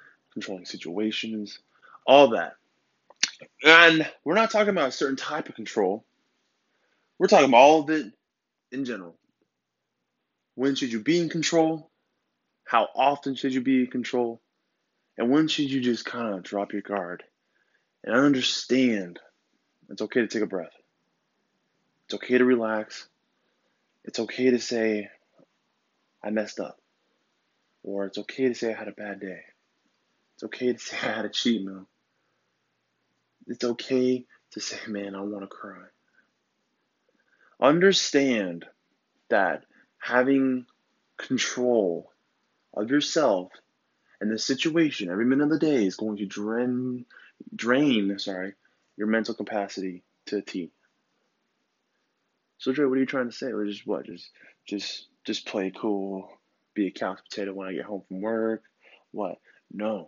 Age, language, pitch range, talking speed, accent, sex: 20-39, English, 100-135 Hz, 145 wpm, American, male